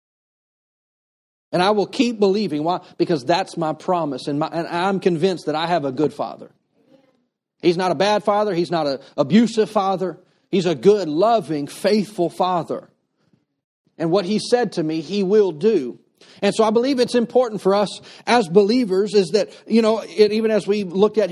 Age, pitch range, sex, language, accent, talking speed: 40-59, 170-215 Hz, male, English, American, 180 wpm